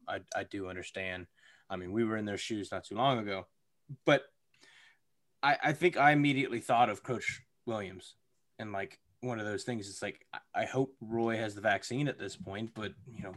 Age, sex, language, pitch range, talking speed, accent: 20-39, male, English, 105-130 Hz, 200 wpm, American